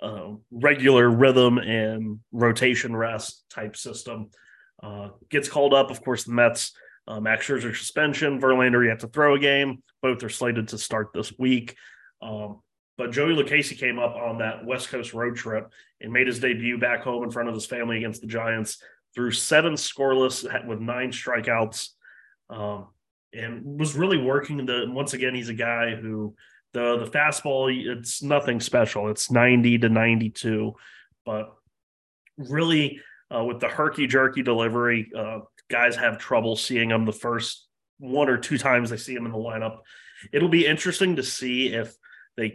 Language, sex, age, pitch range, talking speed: English, male, 20-39, 115-135 Hz, 170 wpm